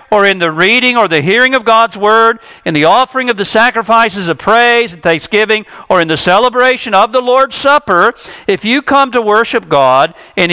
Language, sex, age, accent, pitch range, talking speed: English, male, 50-69, American, 160-225 Hz, 200 wpm